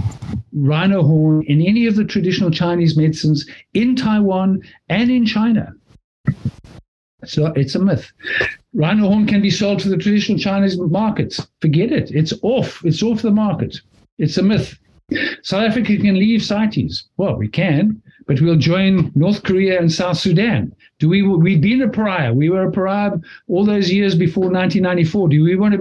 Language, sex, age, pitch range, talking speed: English, male, 60-79, 150-200 Hz, 170 wpm